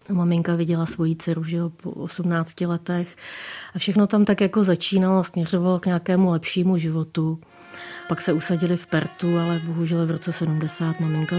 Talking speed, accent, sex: 160 wpm, native, female